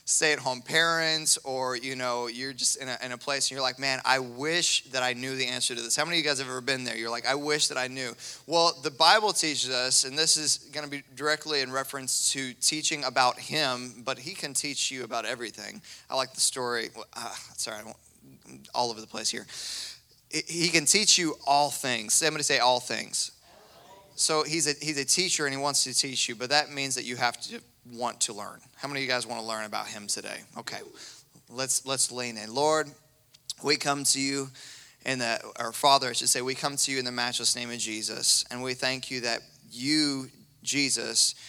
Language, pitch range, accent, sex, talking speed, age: English, 120-145 Hz, American, male, 225 wpm, 20-39